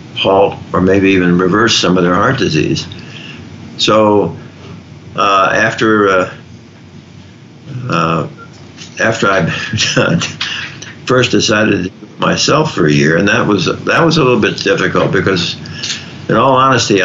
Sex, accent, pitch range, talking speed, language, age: male, American, 95-115 Hz, 125 wpm, English, 60-79